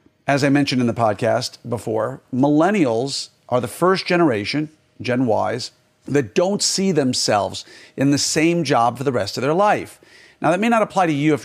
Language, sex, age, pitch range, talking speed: English, male, 50-69, 125-160 Hz, 190 wpm